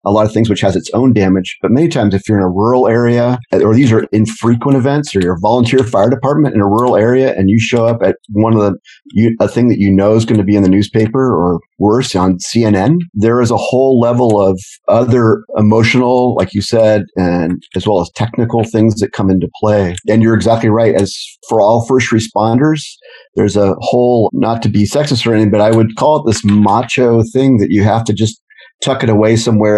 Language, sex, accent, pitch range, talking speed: English, male, American, 100-120 Hz, 230 wpm